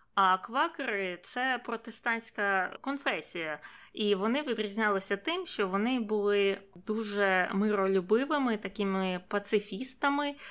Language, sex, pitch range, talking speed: Ukrainian, female, 185-220 Hz, 95 wpm